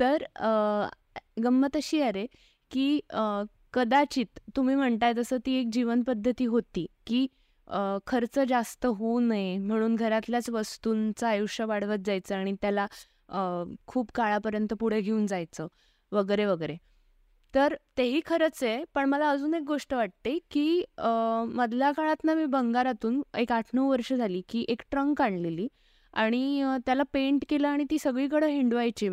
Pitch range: 220-290 Hz